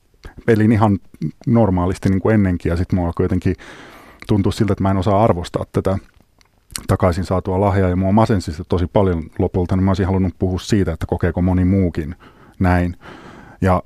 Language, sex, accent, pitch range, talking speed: Finnish, male, native, 90-105 Hz, 170 wpm